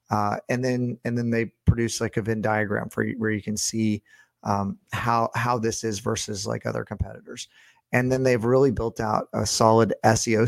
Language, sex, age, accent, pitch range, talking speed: English, male, 30-49, American, 110-125 Hz, 200 wpm